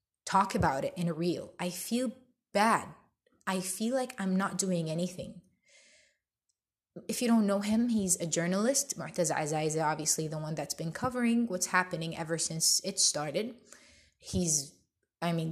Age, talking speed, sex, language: 20-39, 160 wpm, female, English